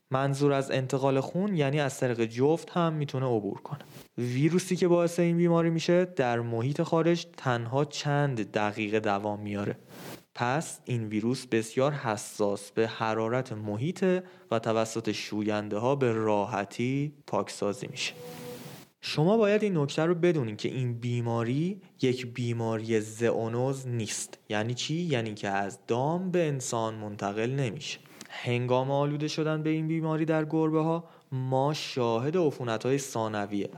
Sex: male